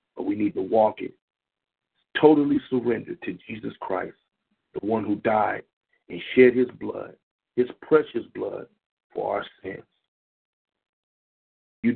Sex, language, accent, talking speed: male, English, American, 125 wpm